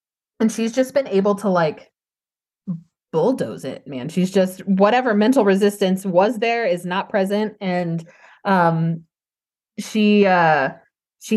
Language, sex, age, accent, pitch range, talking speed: English, female, 20-39, American, 175-210 Hz, 130 wpm